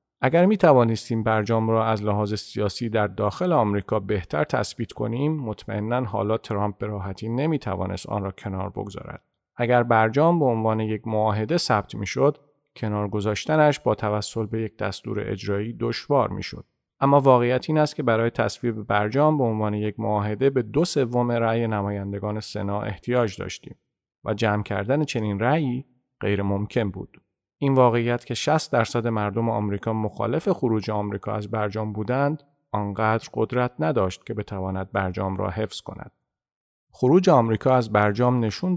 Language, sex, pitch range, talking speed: Persian, male, 105-125 Hz, 155 wpm